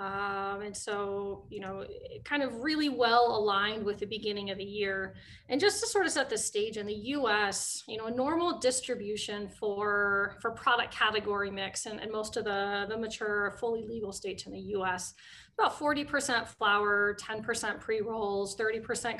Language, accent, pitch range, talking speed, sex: English, American, 200-245 Hz, 175 wpm, female